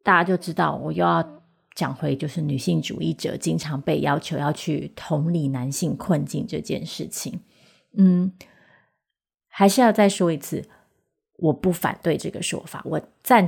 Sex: female